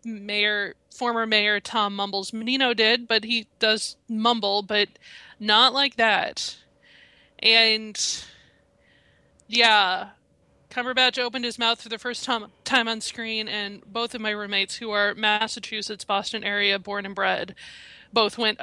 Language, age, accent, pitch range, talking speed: English, 20-39, American, 210-255 Hz, 140 wpm